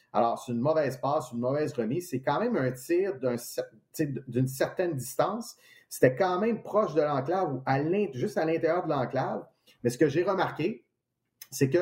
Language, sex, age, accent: French, male, 30-49, Canadian